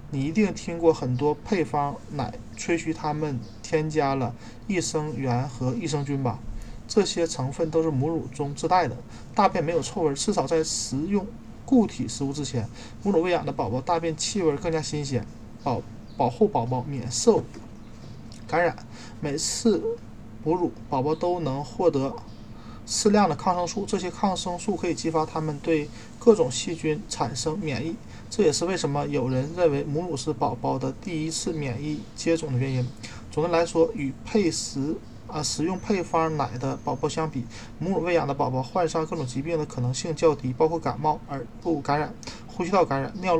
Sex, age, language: male, 20-39, Chinese